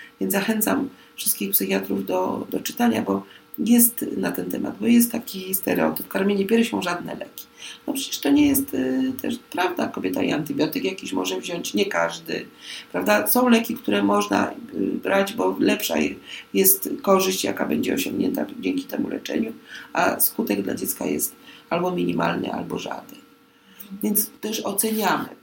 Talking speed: 150 wpm